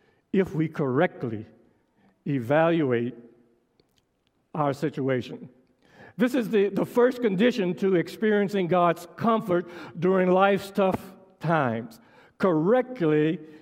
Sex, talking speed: male, 95 wpm